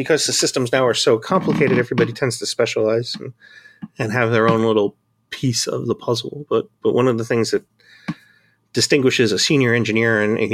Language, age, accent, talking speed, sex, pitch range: English, 30-49, American, 195 wpm, male, 110-135 Hz